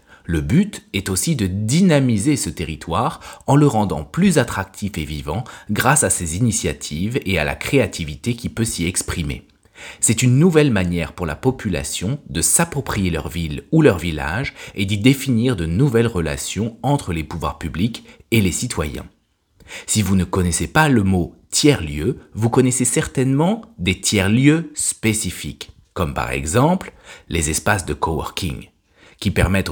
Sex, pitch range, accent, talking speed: male, 85-125 Hz, French, 155 wpm